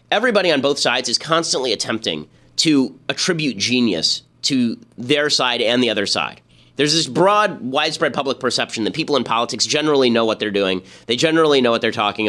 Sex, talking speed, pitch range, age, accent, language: male, 185 wpm, 115-155 Hz, 30-49, American, English